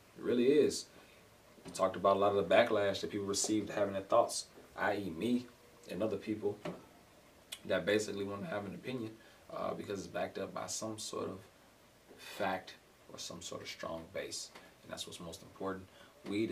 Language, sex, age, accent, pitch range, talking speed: English, male, 20-39, American, 90-105 Hz, 185 wpm